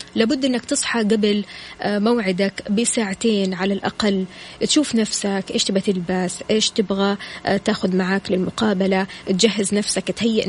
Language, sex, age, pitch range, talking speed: Arabic, female, 20-39, 200-240 Hz, 125 wpm